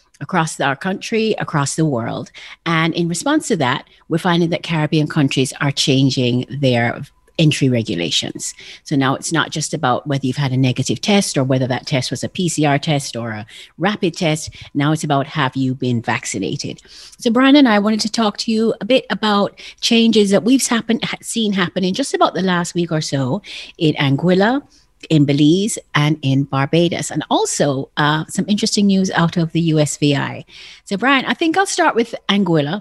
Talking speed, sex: 185 wpm, female